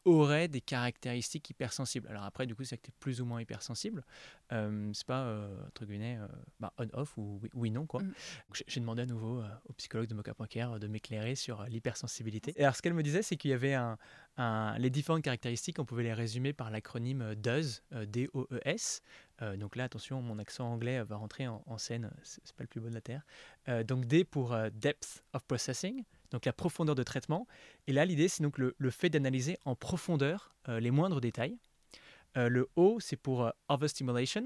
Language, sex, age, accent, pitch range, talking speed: French, male, 20-39, French, 115-150 Hz, 200 wpm